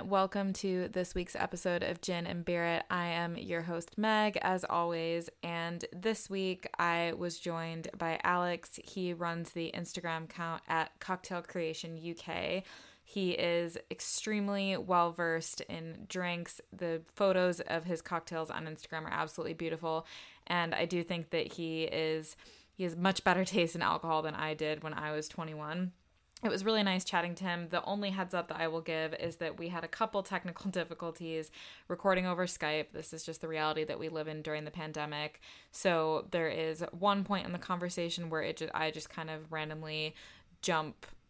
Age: 20-39